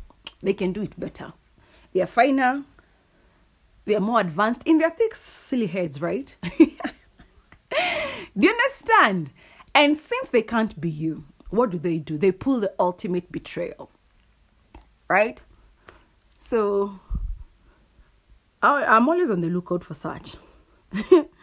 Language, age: English, 30-49